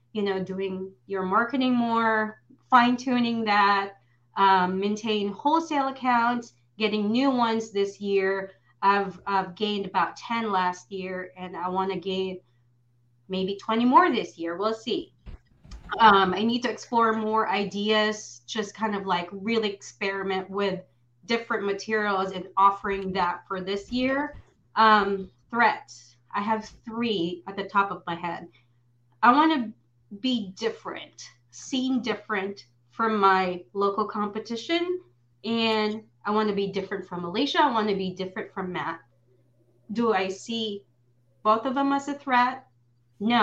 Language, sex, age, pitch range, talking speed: English, female, 30-49, 180-225 Hz, 145 wpm